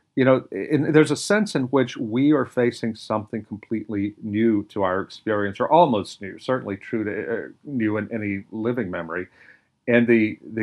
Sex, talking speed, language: male, 175 wpm, English